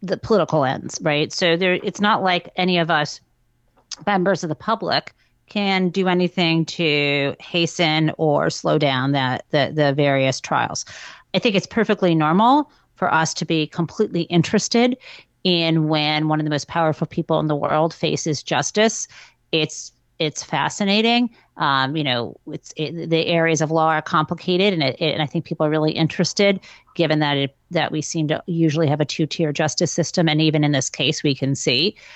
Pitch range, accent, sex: 150-185 Hz, American, female